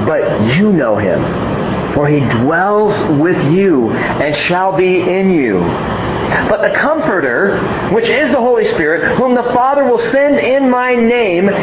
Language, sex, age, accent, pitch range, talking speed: English, male, 40-59, American, 195-250 Hz, 155 wpm